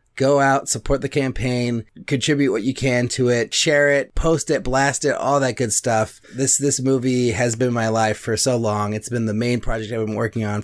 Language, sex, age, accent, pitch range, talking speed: English, male, 30-49, American, 110-135 Hz, 225 wpm